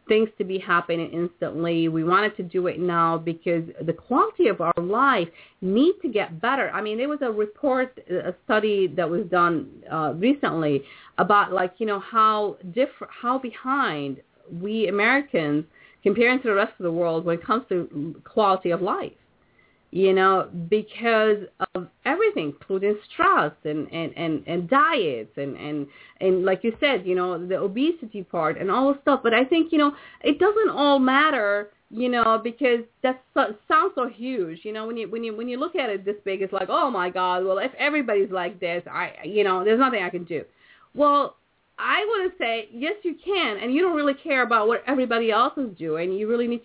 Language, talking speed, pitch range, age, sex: English, 200 wpm, 175-250 Hz, 40-59, female